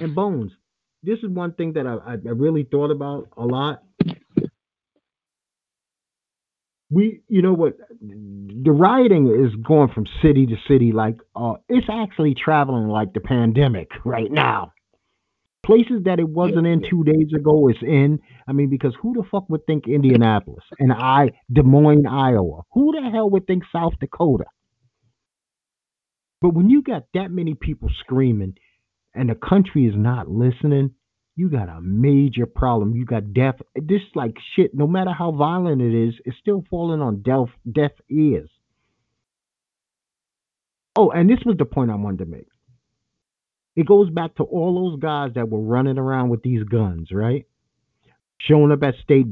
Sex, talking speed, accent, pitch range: male, 165 wpm, American, 120-175 Hz